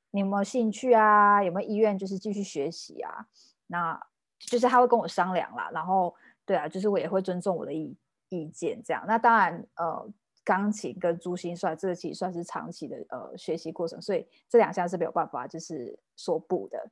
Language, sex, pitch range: Chinese, female, 170-205 Hz